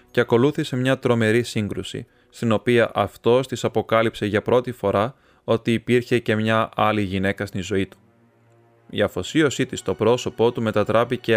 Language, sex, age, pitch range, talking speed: Greek, male, 20-39, 100-115 Hz, 155 wpm